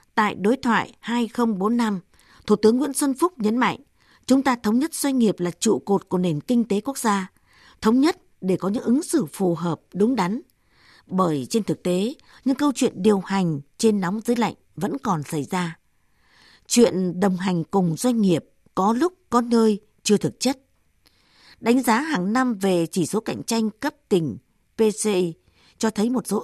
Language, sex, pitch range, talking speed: Vietnamese, female, 185-240 Hz, 190 wpm